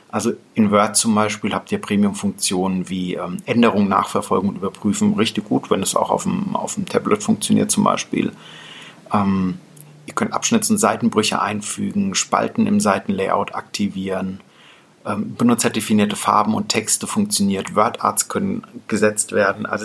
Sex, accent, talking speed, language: male, German, 145 wpm, German